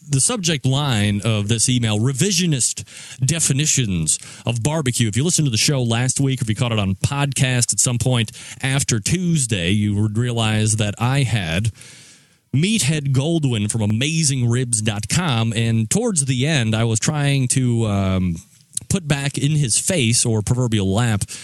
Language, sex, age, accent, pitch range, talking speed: English, male, 30-49, American, 115-145 Hz, 155 wpm